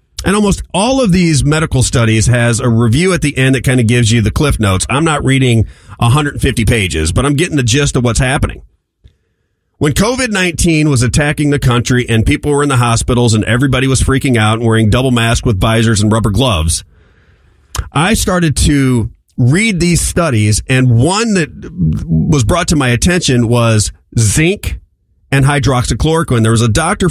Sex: male